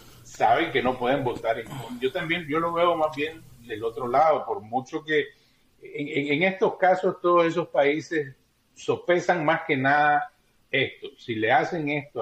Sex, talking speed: male, 170 wpm